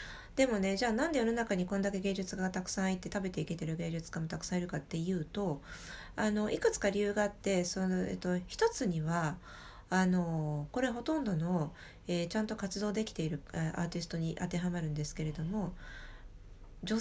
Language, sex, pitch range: Japanese, female, 165-220 Hz